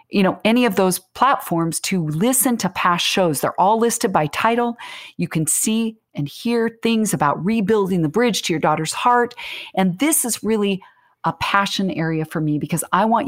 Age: 40-59